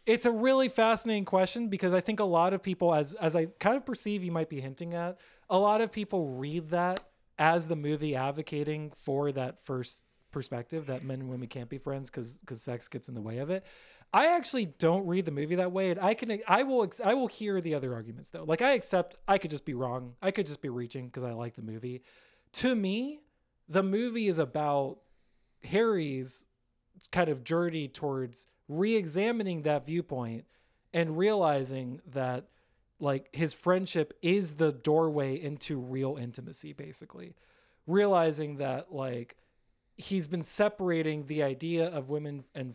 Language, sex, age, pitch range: English, male, 20-39, 130-185 Hz